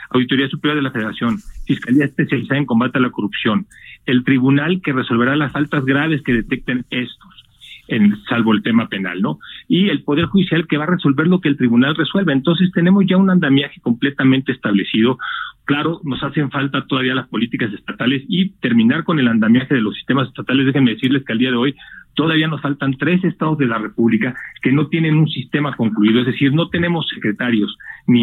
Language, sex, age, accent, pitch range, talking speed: Spanish, male, 40-59, Mexican, 125-155 Hz, 195 wpm